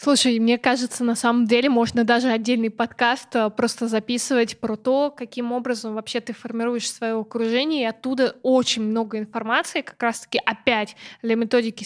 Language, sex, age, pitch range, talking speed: Russian, female, 20-39, 235-270 Hz, 155 wpm